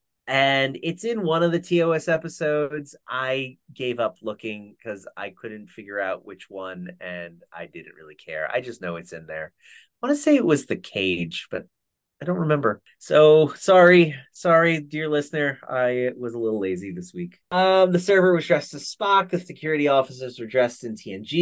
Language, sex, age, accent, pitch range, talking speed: English, male, 30-49, American, 110-175 Hz, 190 wpm